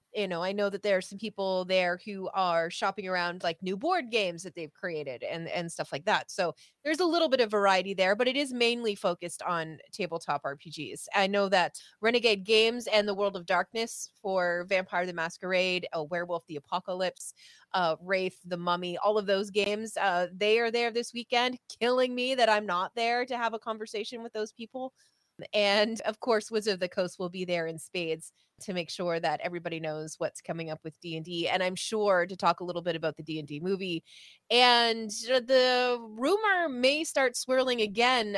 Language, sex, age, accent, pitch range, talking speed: English, female, 30-49, American, 175-230 Hz, 200 wpm